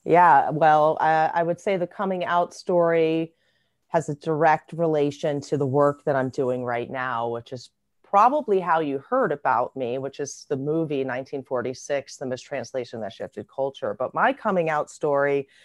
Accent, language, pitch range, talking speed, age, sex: American, English, 135-170 Hz, 175 wpm, 30-49, female